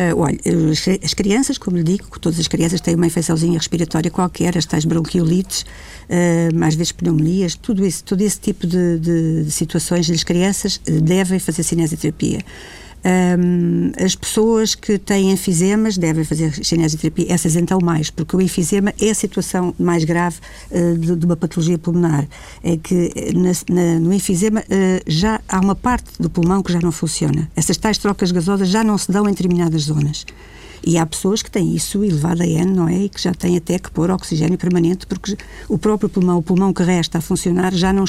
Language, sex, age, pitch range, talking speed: Portuguese, female, 60-79, 165-190 Hz, 185 wpm